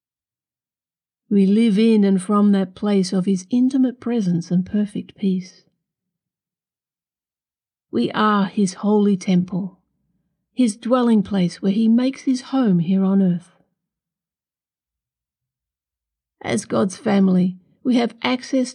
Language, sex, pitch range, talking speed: English, female, 185-235 Hz, 115 wpm